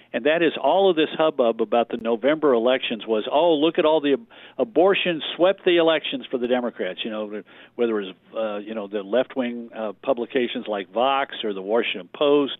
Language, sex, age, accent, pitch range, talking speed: English, male, 50-69, American, 120-160 Hz, 210 wpm